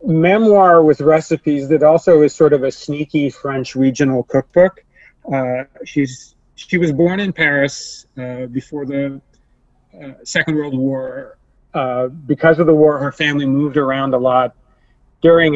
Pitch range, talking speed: 130-155 Hz, 150 wpm